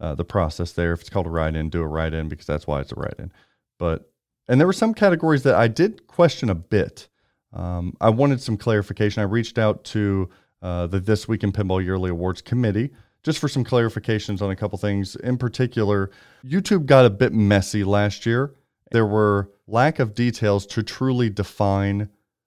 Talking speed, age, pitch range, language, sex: 195 wpm, 30-49, 95-120 Hz, English, male